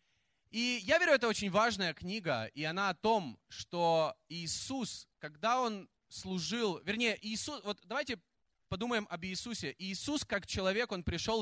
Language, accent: Russian, native